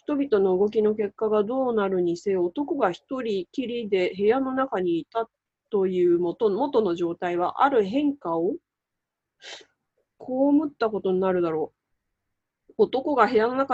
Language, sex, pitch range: Japanese, female, 190-260 Hz